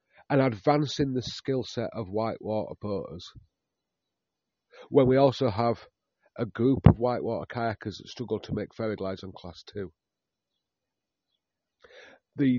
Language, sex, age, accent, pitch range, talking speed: English, male, 40-59, British, 100-125 Hz, 130 wpm